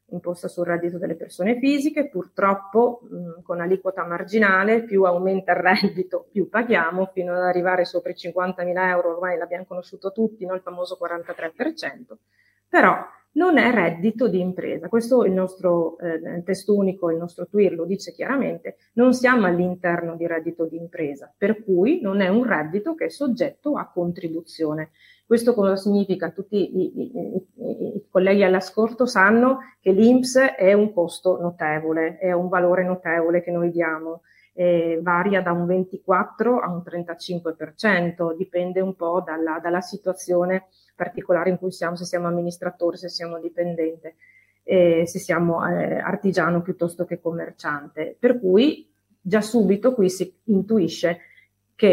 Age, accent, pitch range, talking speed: 30-49, native, 175-200 Hz, 150 wpm